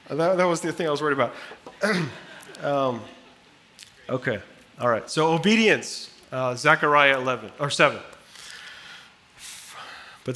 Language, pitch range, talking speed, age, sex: English, 130-160 Hz, 120 wpm, 30-49, male